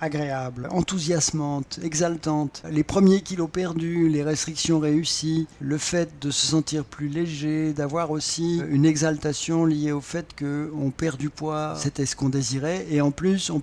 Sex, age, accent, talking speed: male, 50-69, French, 160 wpm